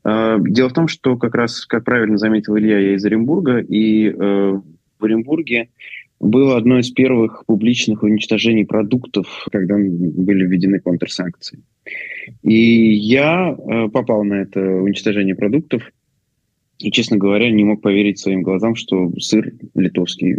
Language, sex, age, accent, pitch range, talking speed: Russian, male, 20-39, native, 95-115 Hz, 140 wpm